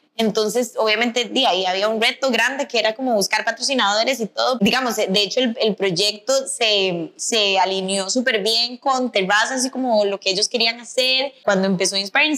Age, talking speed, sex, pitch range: 10-29, 185 wpm, female, 220-275 Hz